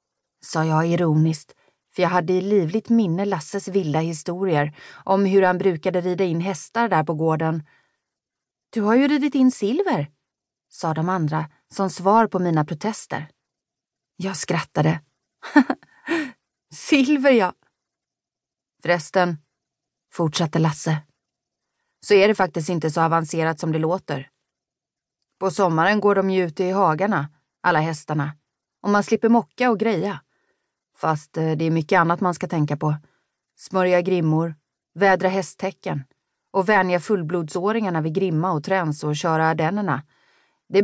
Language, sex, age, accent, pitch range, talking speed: Swedish, female, 30-49, native, 155-200 Hz, 135 wpm